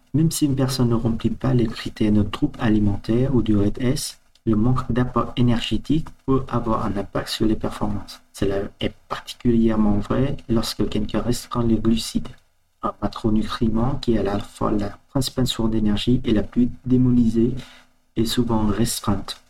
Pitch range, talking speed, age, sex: 105-125 Hz, 165 wpm, 40-59, male